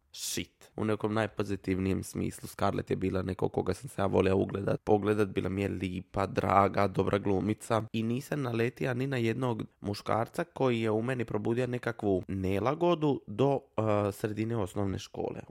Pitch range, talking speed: 100-125 Hz, 165 wpm